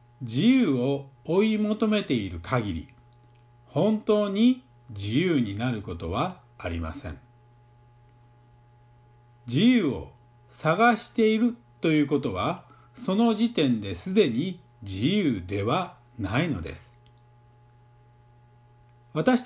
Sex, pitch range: male, 120-185 Hz